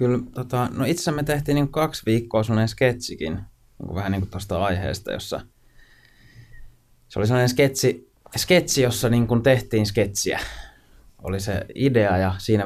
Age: 20-39